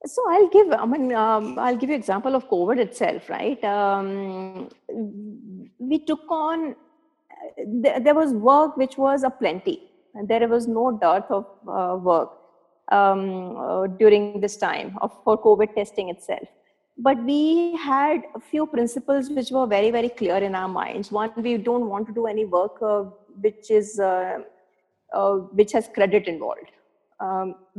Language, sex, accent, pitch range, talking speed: English, female, Indian, 205-260 Hz, 165 wpm